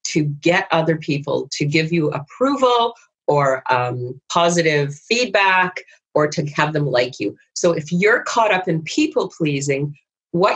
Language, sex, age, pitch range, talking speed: English, female, 40-59, 150-185 Hz, 155 wpm